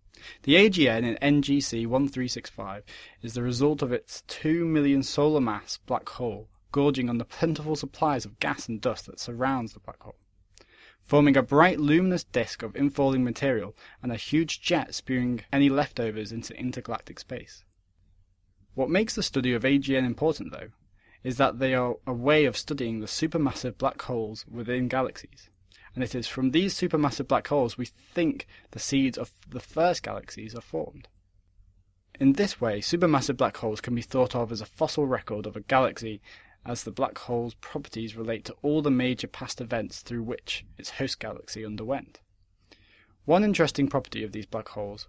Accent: British